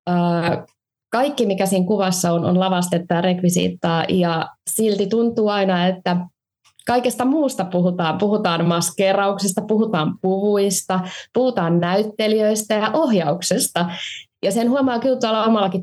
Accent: native